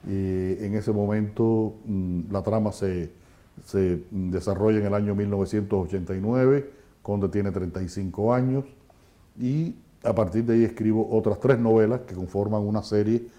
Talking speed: 135 wpm